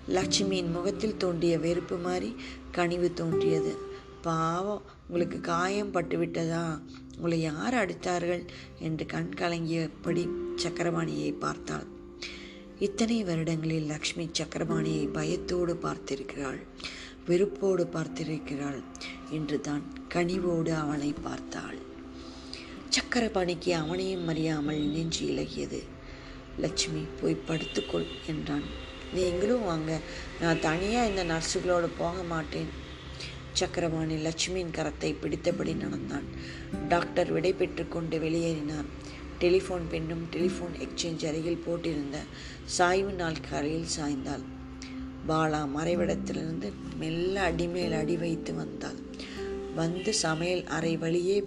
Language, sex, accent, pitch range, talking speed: Tamil, female, native, 145-175 Hz, 95 wpm